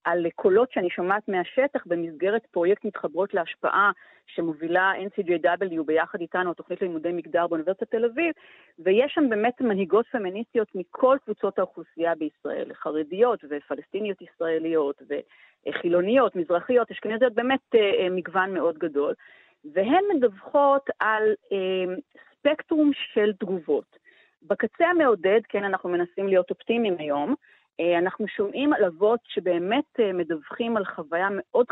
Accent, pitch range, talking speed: native, 175-235 Hz, 115 wpm